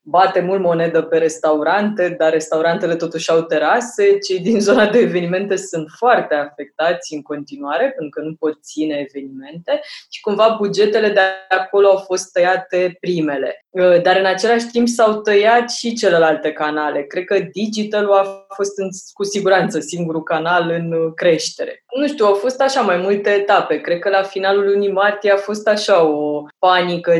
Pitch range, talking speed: 165-215 Hz, 165 wpm